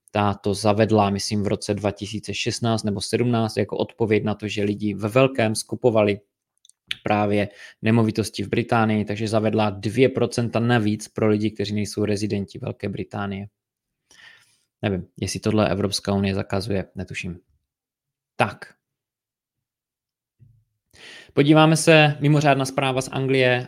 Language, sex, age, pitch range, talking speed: Czech, male, 20-39, 105-120 Hz, 115 wpm